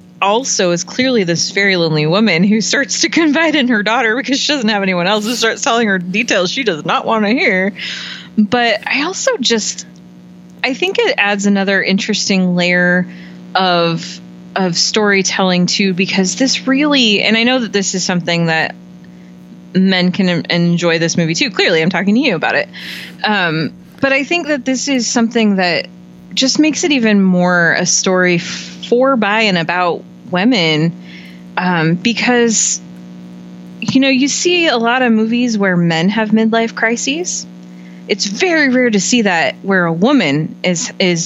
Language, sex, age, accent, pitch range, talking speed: English, female, 20-39, American, 165-230 Hz, 175 wpm